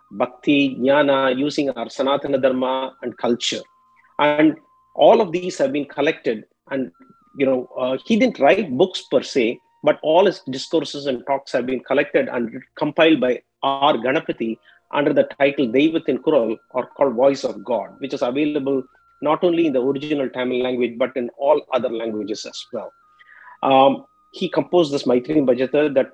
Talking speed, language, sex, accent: 170 wpm, English, male, Indian